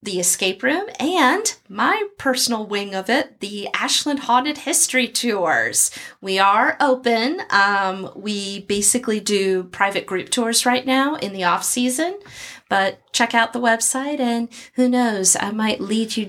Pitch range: 190-235 Hz